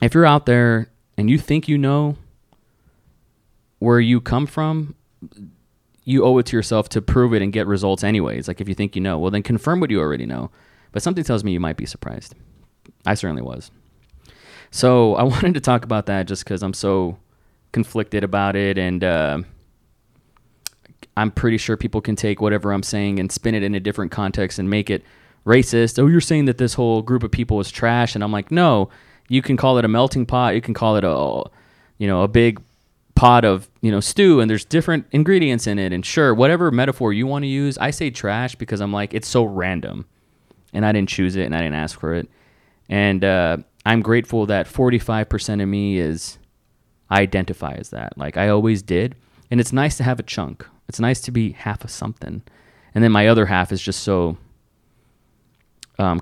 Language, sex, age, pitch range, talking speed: English, male, 20-39, 100-125 Hz, 205 wpm